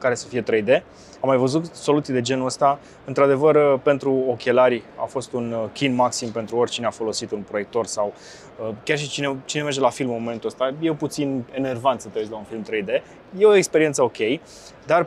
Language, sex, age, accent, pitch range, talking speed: Romanian, male, 20-39, native, 115-140 Hz, 200 wpm